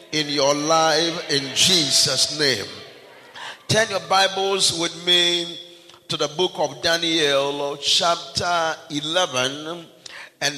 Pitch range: 150-185 Hz